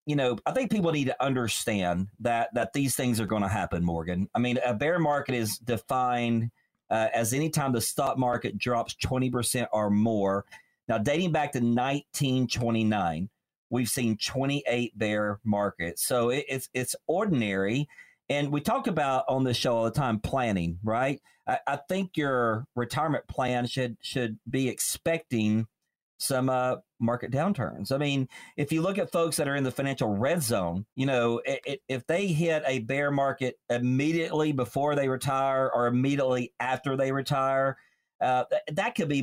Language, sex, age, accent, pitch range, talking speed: English, male, 40-59, American, 115-145 Hz, 175 wpm